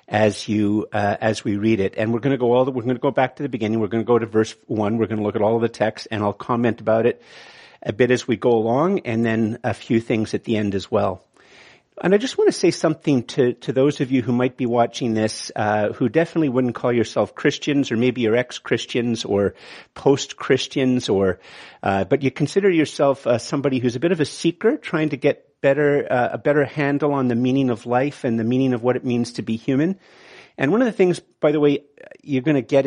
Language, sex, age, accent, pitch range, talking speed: English, male, 50-69, American, 115-140 Hz, 255 wpm